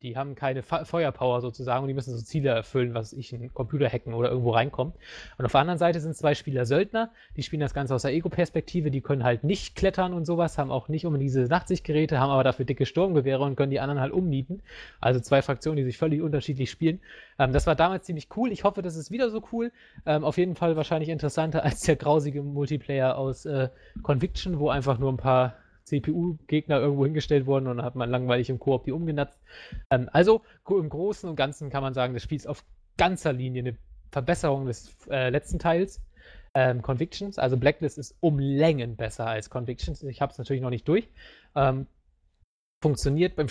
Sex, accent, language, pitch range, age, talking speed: male, German, English, 130-165 Hz, 20-39, 210 wpm